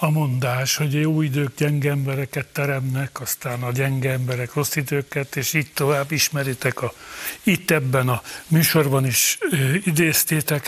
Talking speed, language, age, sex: 150 wpm, Hungarian, 60-79, male